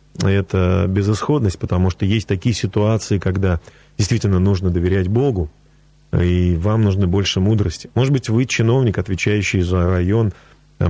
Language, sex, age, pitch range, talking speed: Russian, male, 30-49, 95-135 Hz, 140 wpm